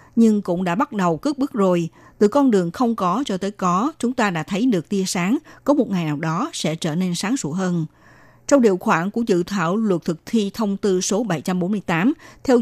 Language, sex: Vietnamese, female